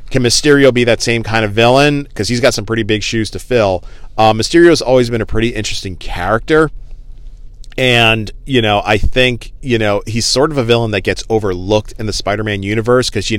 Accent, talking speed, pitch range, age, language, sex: American, 205 wpm, 100-120 Hz, 40-59, English, male